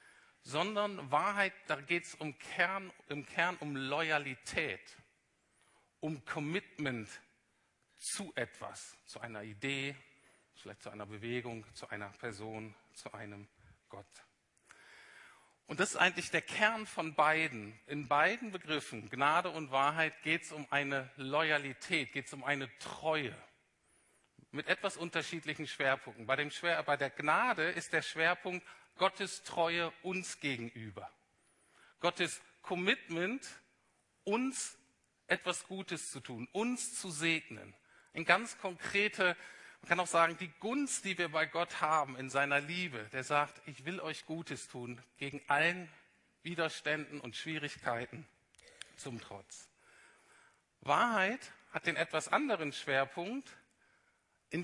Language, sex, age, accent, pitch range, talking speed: German, male, 50-69, German, 140-180 Hz, 125 wpm